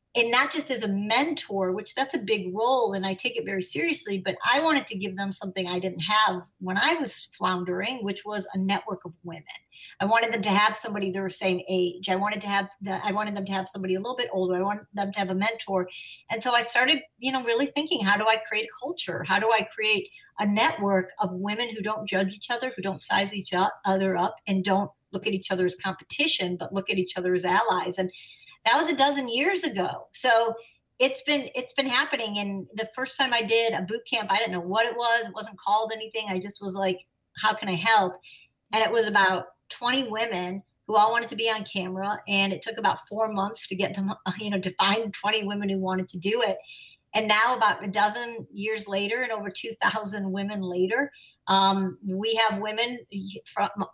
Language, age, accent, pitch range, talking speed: English, 50-69, American, 190-230 Hz, 230 wpm